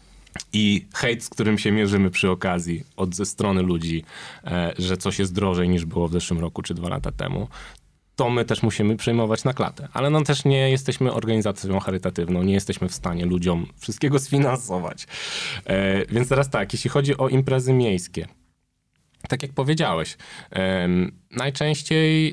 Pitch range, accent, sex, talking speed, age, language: 95-125 Hz, native, male, 155 wpm, 20-39, Polish